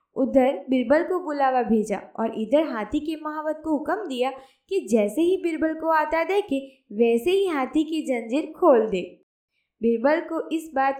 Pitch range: 235-310 Hz